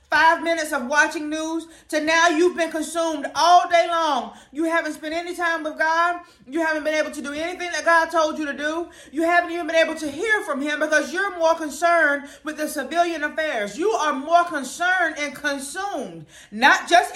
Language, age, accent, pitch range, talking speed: English, 30-49, American, 285-335 Hz, 205 wpm